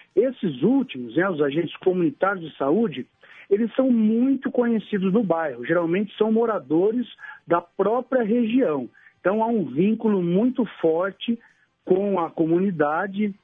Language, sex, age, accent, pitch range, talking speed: Portuguese, male, 50-69, Brazilian, 160-220 Hz, 130 wpm